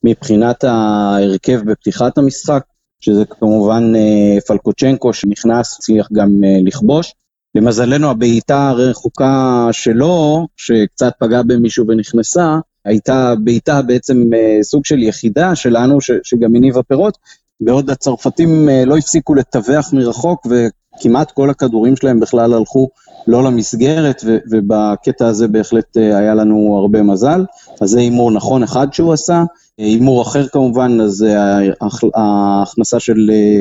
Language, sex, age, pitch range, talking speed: Hebrew, male, 30-49, 110-130 Hz, 120 wpm